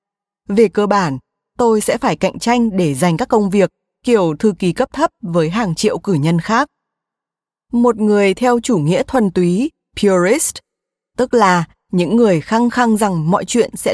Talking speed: 180 wpm